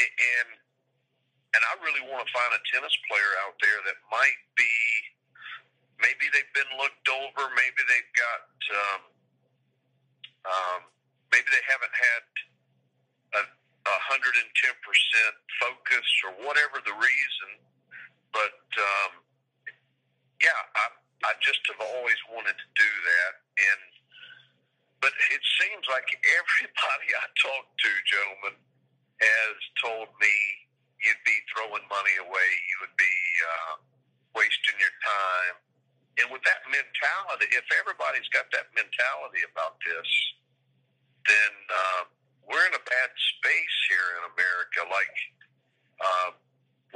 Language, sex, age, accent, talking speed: English, male, 50-69, American, 125 wpm